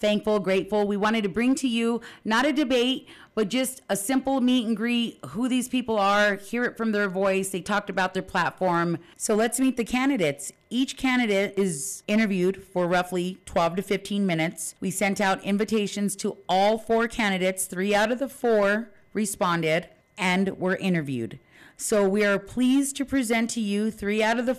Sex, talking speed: female, 185 wpm